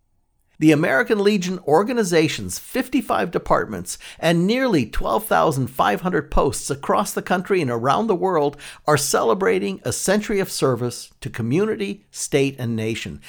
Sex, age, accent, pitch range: male, 60-79, American, 130-205 Hz